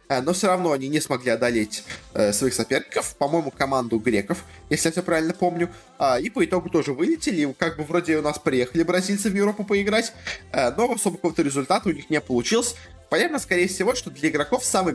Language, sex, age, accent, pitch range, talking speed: Russian, male, 20-39, native, 135-175 Hz, 195 wpm